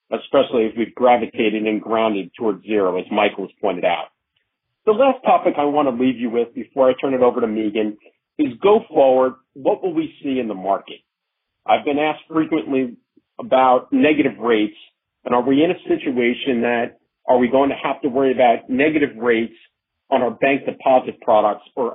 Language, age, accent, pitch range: English, 50-69, American, 115-145 Hz